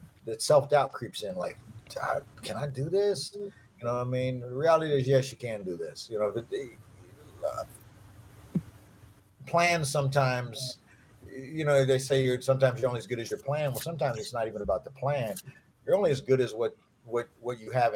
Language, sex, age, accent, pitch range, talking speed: English, male, 50-69, American, 110-135 Hz, 200 wpm